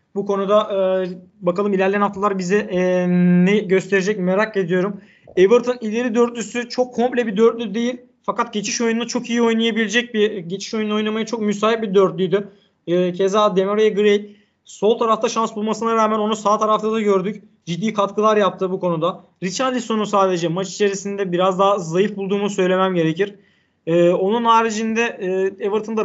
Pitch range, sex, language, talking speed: 185-215 Hz, male, Turkish, 155 wpm